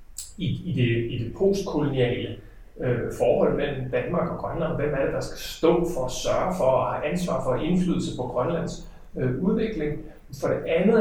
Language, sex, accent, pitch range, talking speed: Danish, male, native, 125-170 Hz, 190 wpm